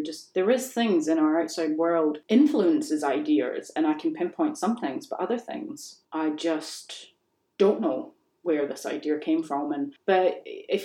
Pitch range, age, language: 160-245 Hz, 30-49, English